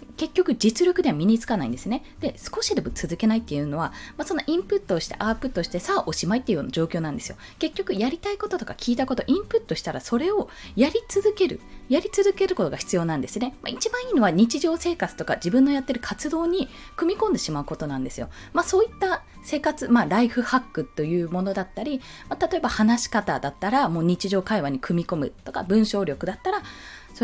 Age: 20-39